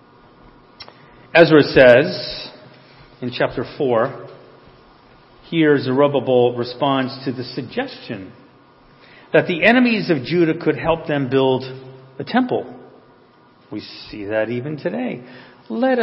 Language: English